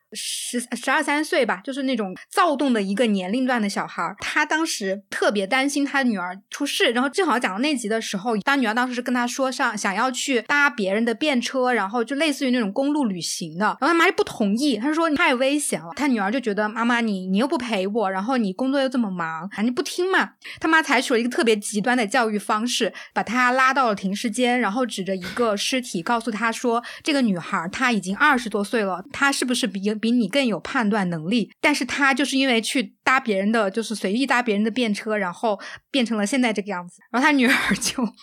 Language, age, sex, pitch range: Chinese, 20-39, female, 210-275 Hz